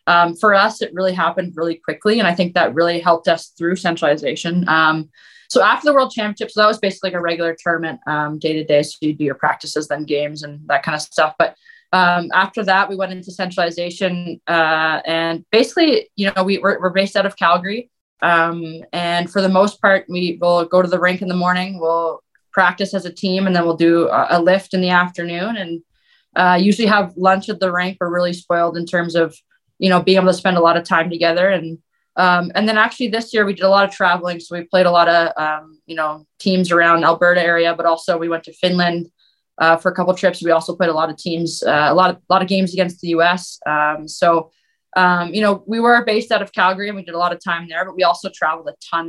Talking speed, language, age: 245 wpm, English, 20-39